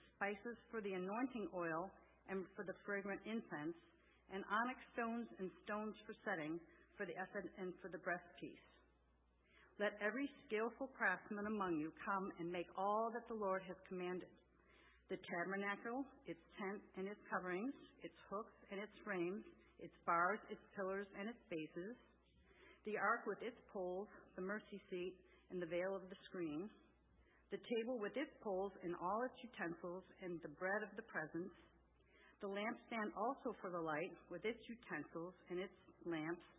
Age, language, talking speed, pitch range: 50-69, English, 165 wpm, 175-215 Hz